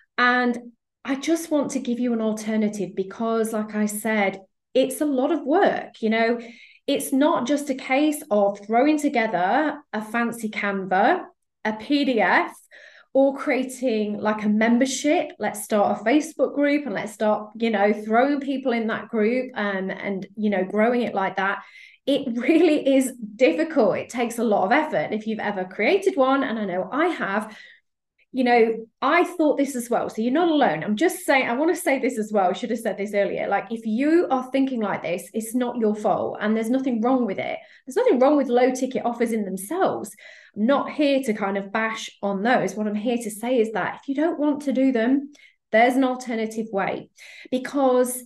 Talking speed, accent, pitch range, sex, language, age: 200 wpm, British, 215-275 Hz, female, English, 20-39